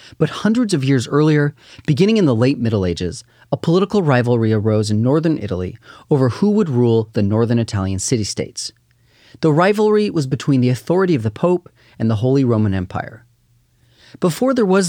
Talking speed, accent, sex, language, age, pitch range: 175 wpm, American, male, English, 30-49, 115-155 Hz